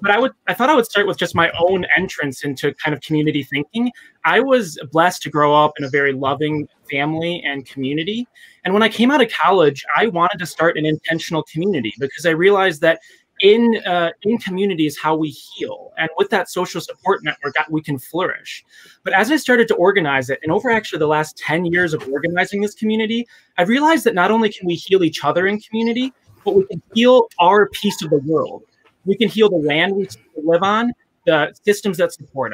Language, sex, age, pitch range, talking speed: English, male, 20-39, 155-210 Hz, 220 wpm